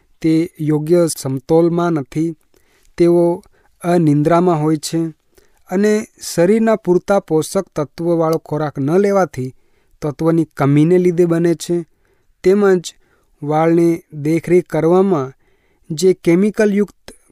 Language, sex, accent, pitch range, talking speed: Gujarati, male, native, 150-185 Hz, 95 wpm